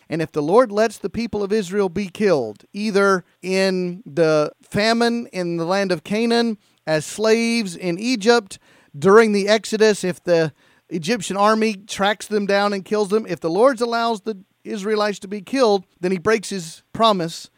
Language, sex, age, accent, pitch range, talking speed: English, male, 40-59, American, 160-205 Hz, 175 wpm